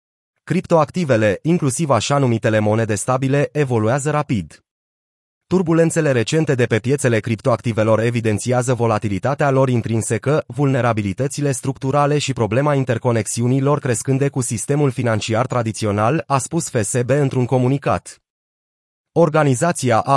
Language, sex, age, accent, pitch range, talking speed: Romanian, male, 30-49, native, 115-145 Hz, 105 wpm